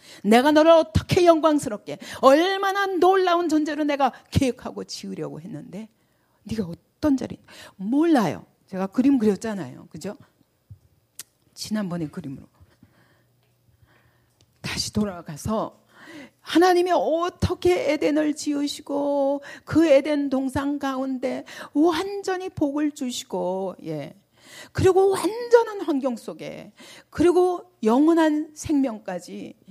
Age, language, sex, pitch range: 40-59, Korean, female, 220-320 Hz